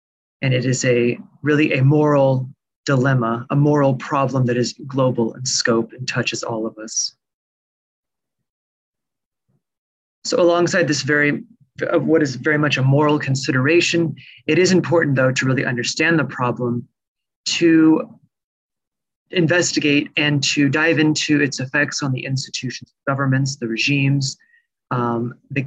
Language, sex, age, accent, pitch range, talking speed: English, male, 30-49, American, 125-155 Hz, 135 wpm